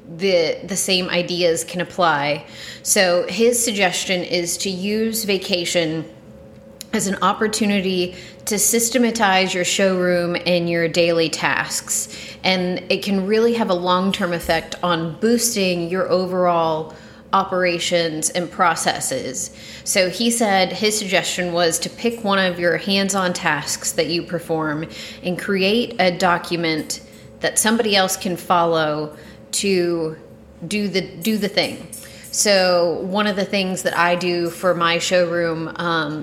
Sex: female